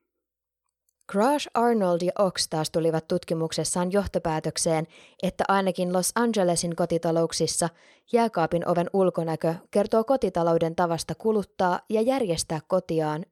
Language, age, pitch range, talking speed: Finnish, 20-39, 165-210 Hz, 105 wpm